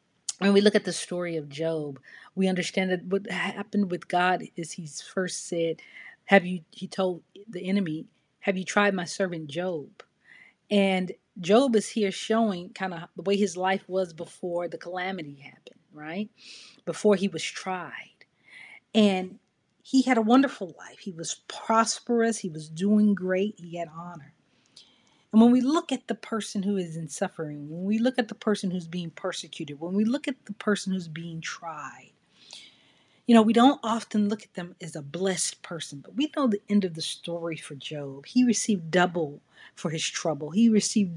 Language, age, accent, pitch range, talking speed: English, 40-59, American, 170-210 Hz, 185 wpm